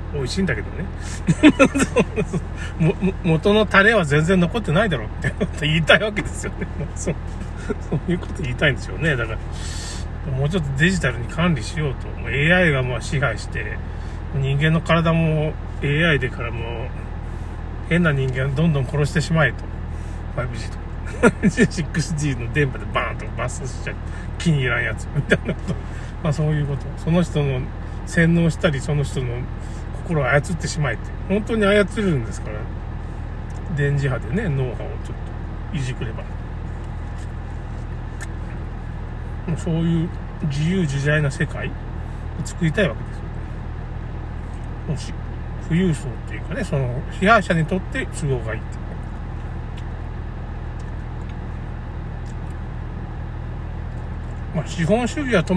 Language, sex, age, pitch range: Japanese, male, 40-59, 100-165 Hz